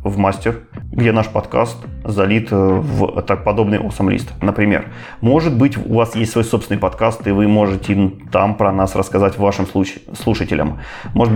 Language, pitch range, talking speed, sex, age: Russian, 100-115 Hz, 160 wpm, male, 20-39